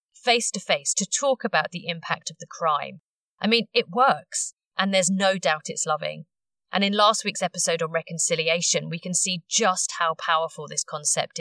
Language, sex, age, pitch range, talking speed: English, female, 30-49, 160-220 Hz, 190 wpm